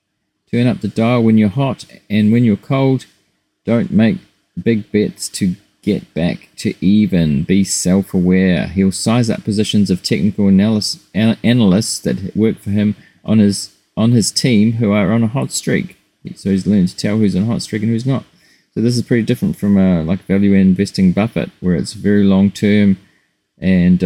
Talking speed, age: 190 wpm, 30-49